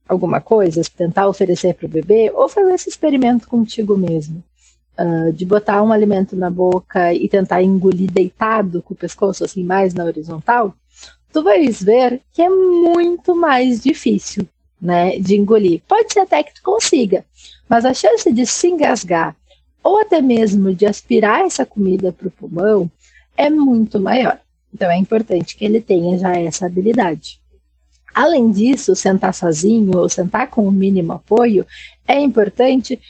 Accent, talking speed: Brazilian, 160 wpm